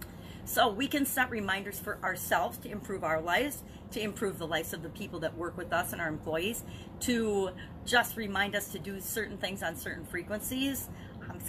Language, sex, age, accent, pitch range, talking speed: English, female, 40-59, American, 180-230 Hz, 200 wpm